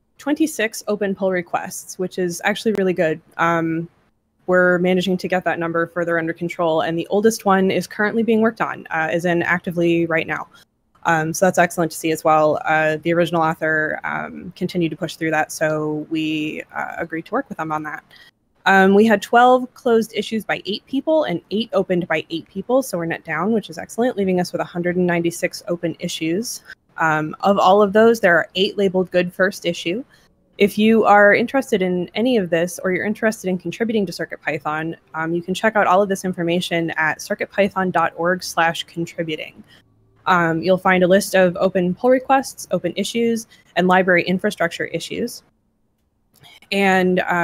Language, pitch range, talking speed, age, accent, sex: English, 165-200 Hz, 185 wpm, 20-39, American, female